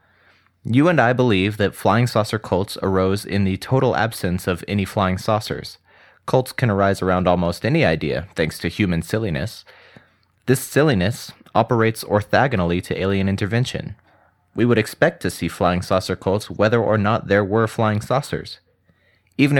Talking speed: 155 wpm